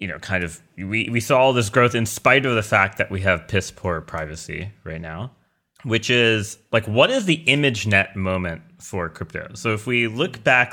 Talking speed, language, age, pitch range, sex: 215 wpm, English, 30-49, 90-120 Hz, male